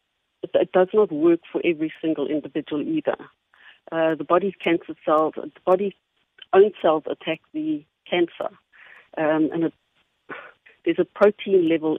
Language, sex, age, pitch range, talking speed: English, female, 60-79, 155-205 Hz, 135 wpm